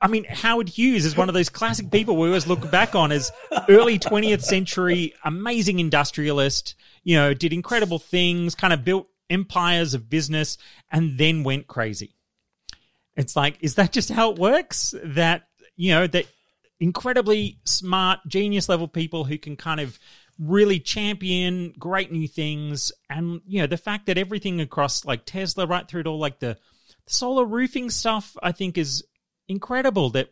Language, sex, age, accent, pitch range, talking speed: English, male, 30-49, Australian, 145-185 Hz, 170 wpm